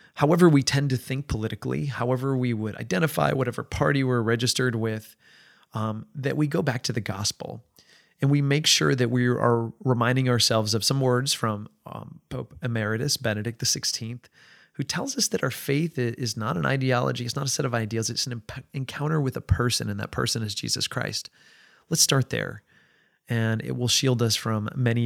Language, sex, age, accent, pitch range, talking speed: English, male, 30-49, American, 110-130 Hz, 190 wpm